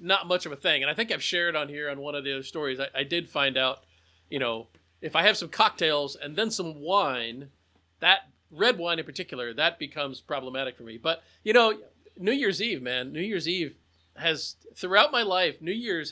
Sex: male